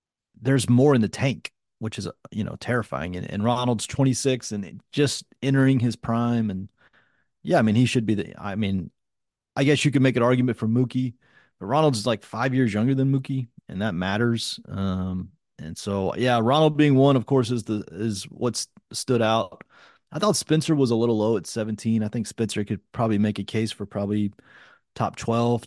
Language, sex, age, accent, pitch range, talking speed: English, male, 30-49, American, 105-135 Hz, 200 wpm